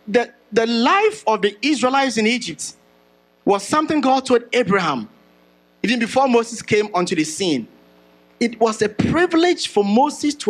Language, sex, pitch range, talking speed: English, male, 180-275 Hz, 155 wpm